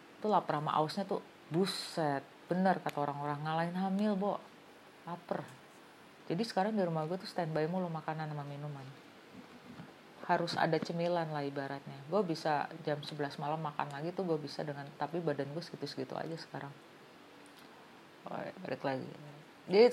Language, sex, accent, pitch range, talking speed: Indonesian, female, native, 150-190 Hz, 155 wpm